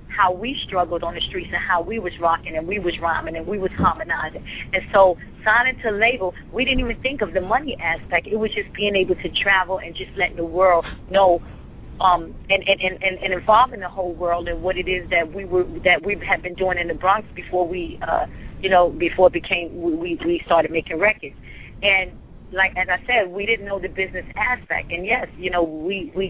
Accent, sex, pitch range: American, female, 170-195 Hz